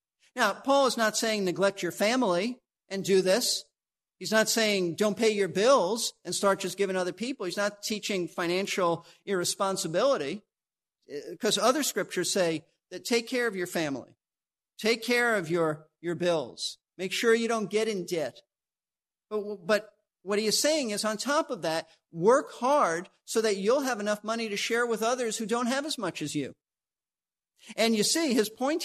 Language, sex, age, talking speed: English, male, 50-69, 180 wpm